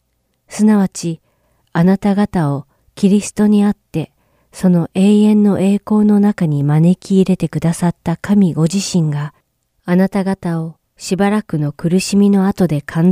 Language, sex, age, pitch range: Japanese, female, 40-59, 150-195 Hz